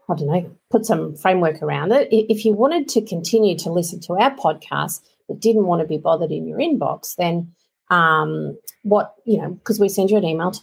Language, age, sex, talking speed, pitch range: English, 40-59, female, 220 wpm, 170-225 Hz